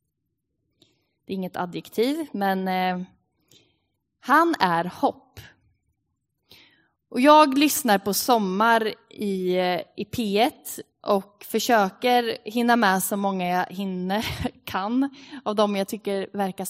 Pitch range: 190-250 Hz